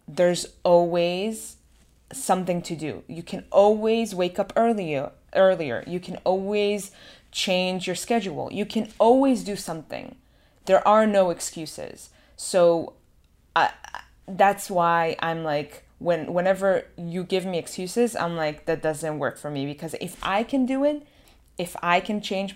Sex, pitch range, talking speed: female, 160-195 Hz, 150 wpm